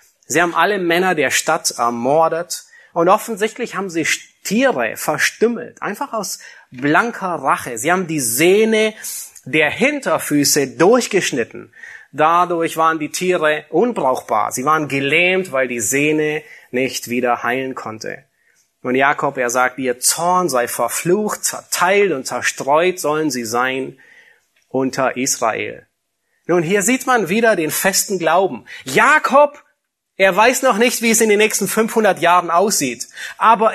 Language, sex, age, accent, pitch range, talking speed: German, male, 30-49, German, 145-220 Hz, 135 wpm